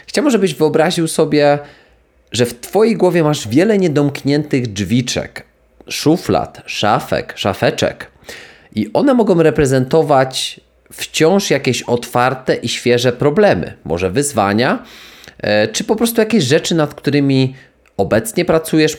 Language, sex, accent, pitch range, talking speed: Polish, male, native, 115-150 Hz, 115 wpm